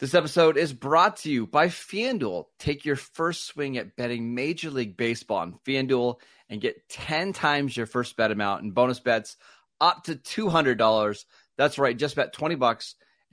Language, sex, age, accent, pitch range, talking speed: English, male, 30-49, American, 115-150 Hz, 170 wpm